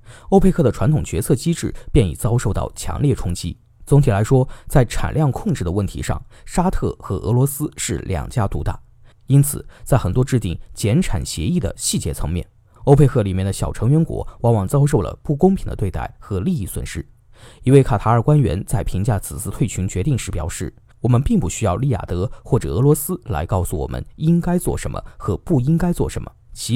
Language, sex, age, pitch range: Chinese, male, 20-39, 100-145 Hz